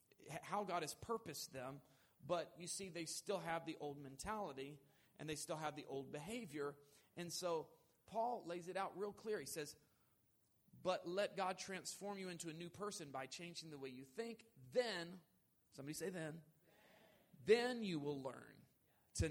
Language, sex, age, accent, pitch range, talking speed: English, male, 40-59, American, 135-190 Hz, 170 wpm